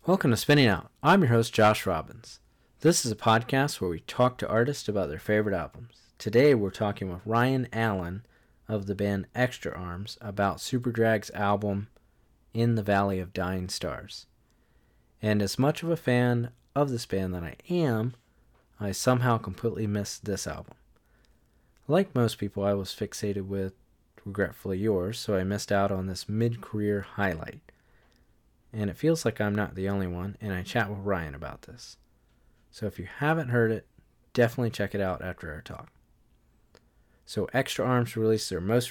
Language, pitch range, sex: English, 100-120 Hz, male